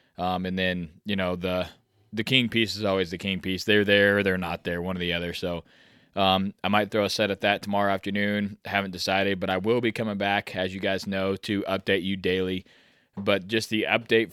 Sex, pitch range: male, 95-105 Hz